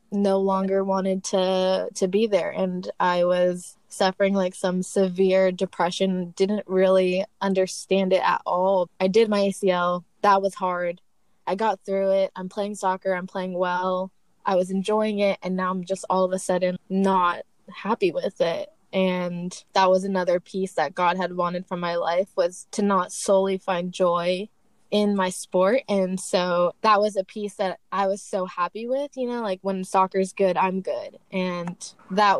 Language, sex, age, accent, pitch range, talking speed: English, female, 20-39, American, 180-195 Hz, 180 wpm